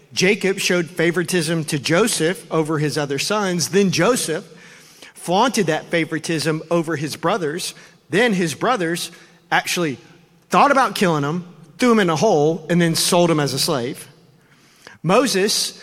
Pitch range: 160-190 Hz